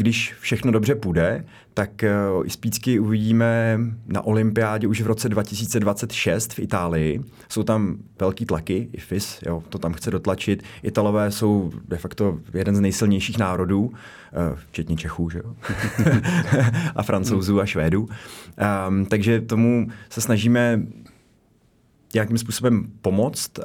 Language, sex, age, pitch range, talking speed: Czech, male, 30-49, 100-115 Hz, 125 wpm